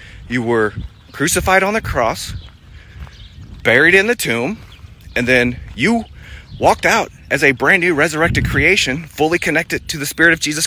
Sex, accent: male, American